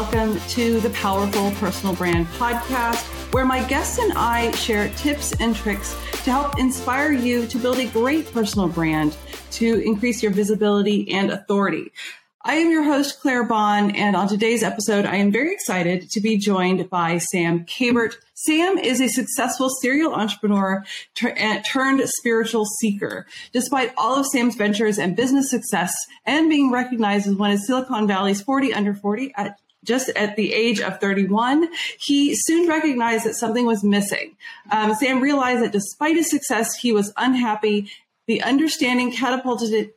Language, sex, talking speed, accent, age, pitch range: English, female, 160 wpm, American, 40-59, 200-255 Hz